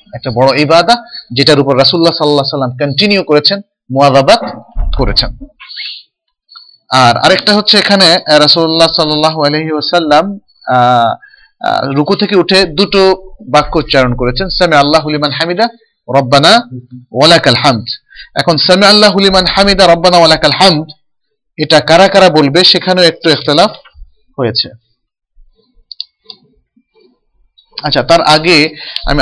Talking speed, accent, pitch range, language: 80 wpm, native, 135-180 Hz, Bengali